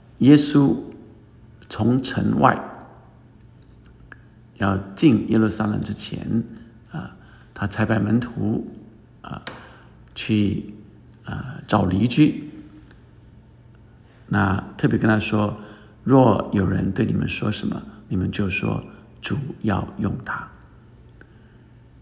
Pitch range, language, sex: 105-120 Hz, Chinese, male